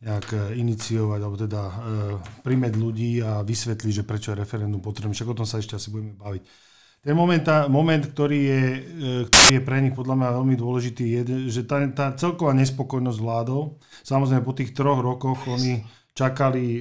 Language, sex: Slovak, male